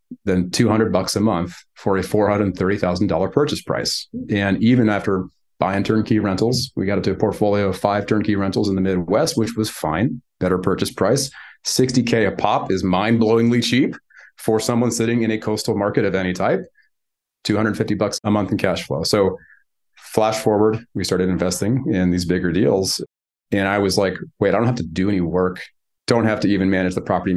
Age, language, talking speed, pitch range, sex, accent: 30-49, English, 205 wpm, 95-110 Hz, male, American